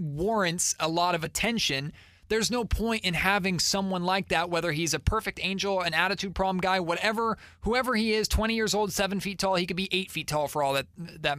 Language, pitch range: English, 155-185 Hz